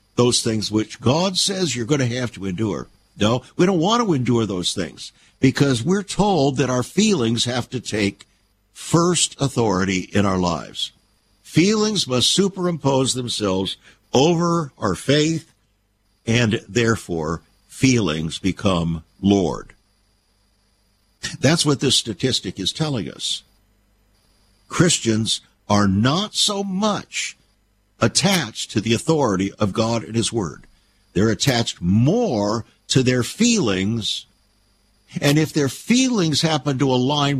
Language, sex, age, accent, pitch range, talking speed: English, male, 60-79, American, 100-140 Hz, 125 wpm